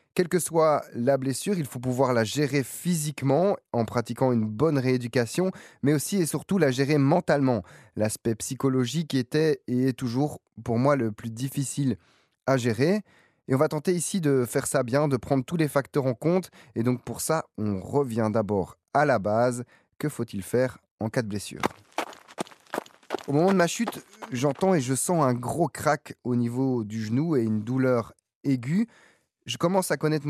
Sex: male